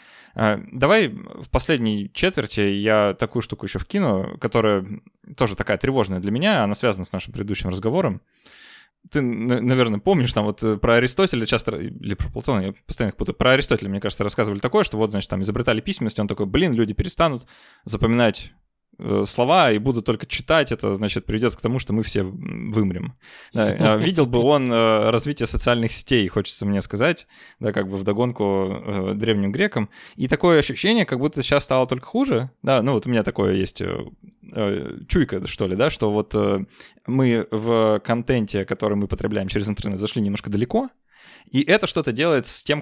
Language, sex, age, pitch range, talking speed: Russian, male, 20-39, 105-130 Hz, 180 wpm